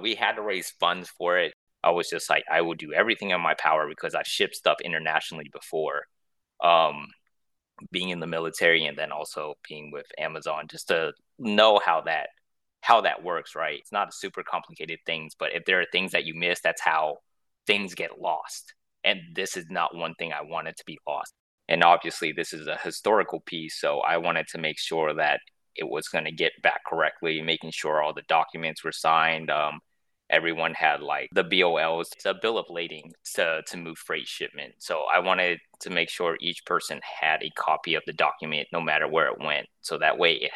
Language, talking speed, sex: English, 205 wpm, male